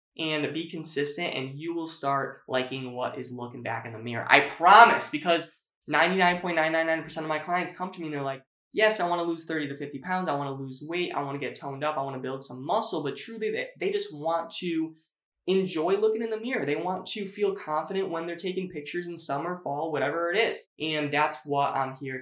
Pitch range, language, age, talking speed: 145-195 Hz, English, 20-39, 220 wpm